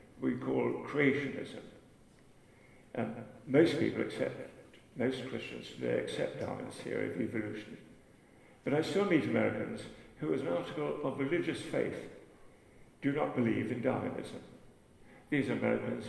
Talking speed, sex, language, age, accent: 135 wpm, male, English, 60-79, British